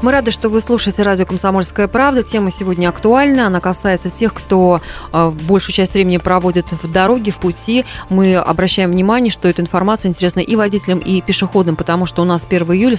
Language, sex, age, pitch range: Russian, female, 20-39, 175-215 Hz